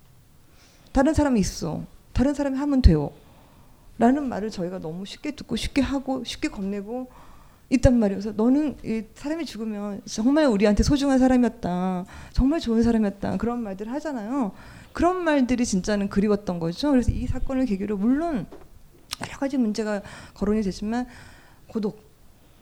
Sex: female